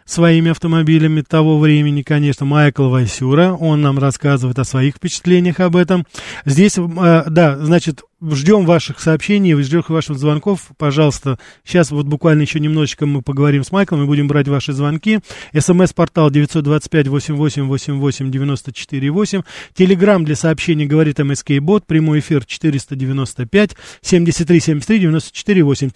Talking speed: 120 wpm